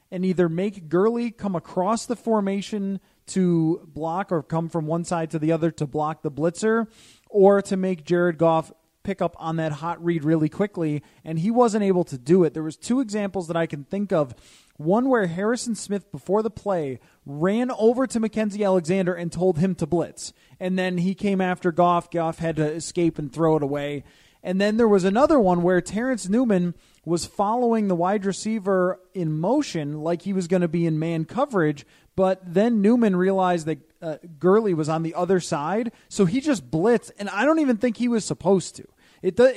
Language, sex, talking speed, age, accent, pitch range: English, male, 200 wpm, 30-49, American, 165-205 Hz